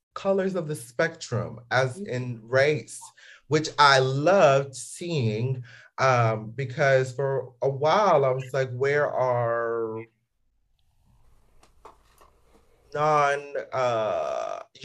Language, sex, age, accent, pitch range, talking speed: English, male, 30-49, American, 120-155 Hz, 95 wpm